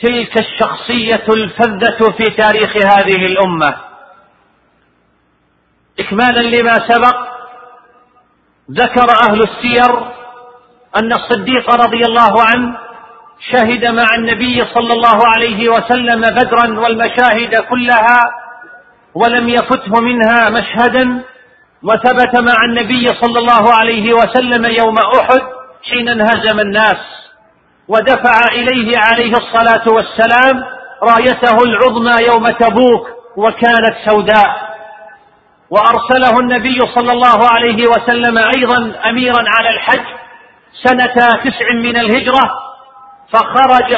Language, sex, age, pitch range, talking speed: Arabic, male, 50-69, 225-245 Hz, 95 wpm